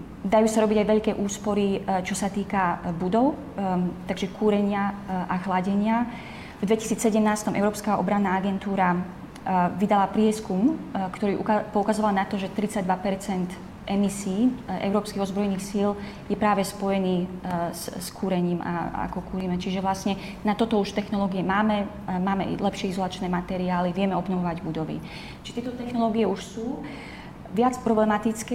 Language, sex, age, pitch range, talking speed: Slovak, female, 20-39, 190-210 Hz, 125 wpm